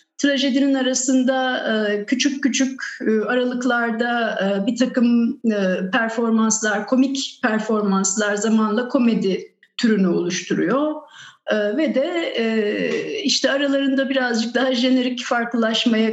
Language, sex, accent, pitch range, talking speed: Turkish, female, native, 210-265 Hz, 80 wpm